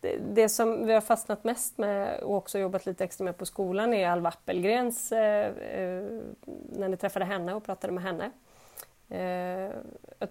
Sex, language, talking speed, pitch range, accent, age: female, Swedish, 155 wpm, 180-210 Hz, native, 30-49